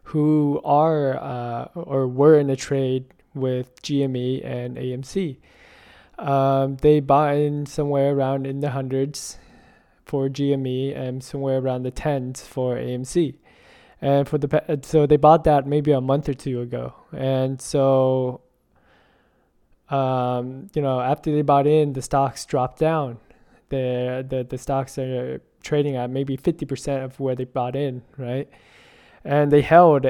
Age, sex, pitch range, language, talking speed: 20-39, male, 130-145 Hz, English, 150 wpm